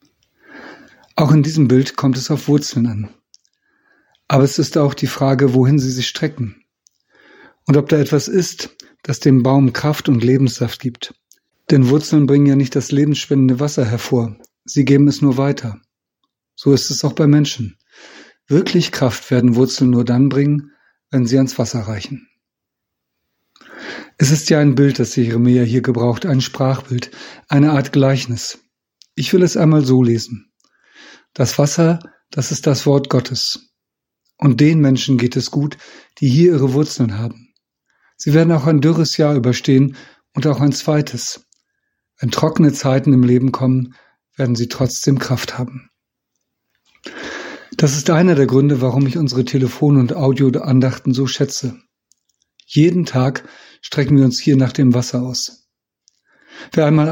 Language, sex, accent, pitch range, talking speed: German, male, German, 130-150 Hz, 155 wpm